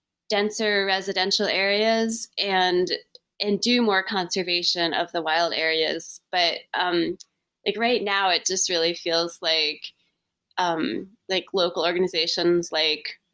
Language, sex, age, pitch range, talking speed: English, female, 20-39, 165-195 Hz, 120 wpm